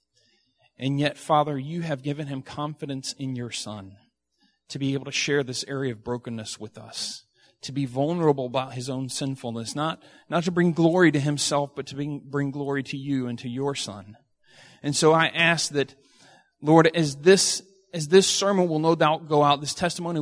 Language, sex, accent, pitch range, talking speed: English, male, American, 130-160 Hz, 195 wpm